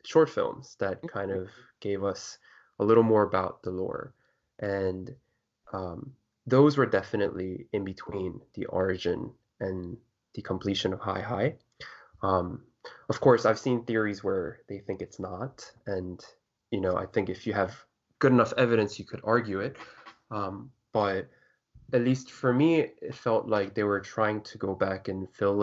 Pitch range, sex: 95-120 Hz, male